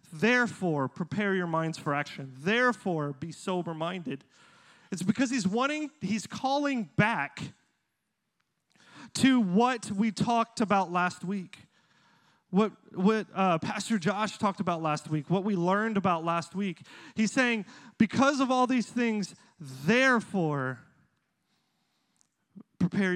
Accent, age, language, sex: American, 30-49, English, male